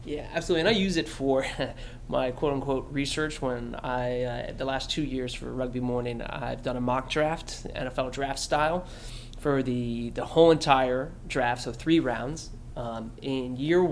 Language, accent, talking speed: English, American, 175 wpm